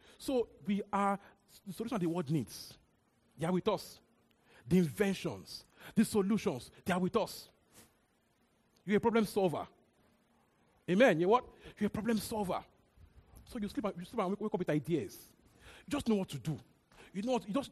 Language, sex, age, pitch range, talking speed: English, male, 40-59, 135-200 Hz, 185 wpm